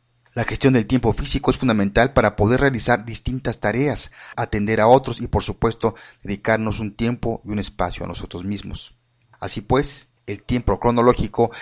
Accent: Mexican